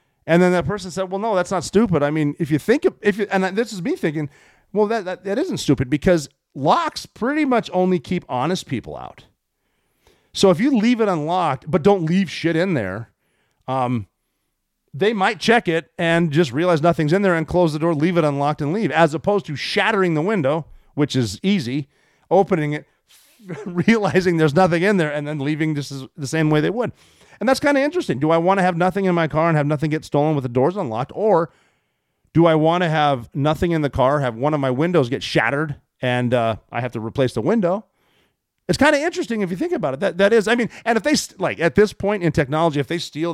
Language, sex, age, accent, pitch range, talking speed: English, male, 40-59, American, 130-185 Hz, 235 wpm